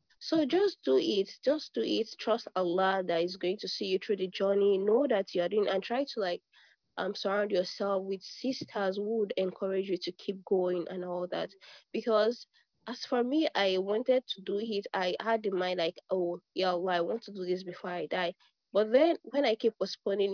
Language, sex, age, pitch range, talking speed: English, female, 20-39, 180-215 Hz, 215 wpm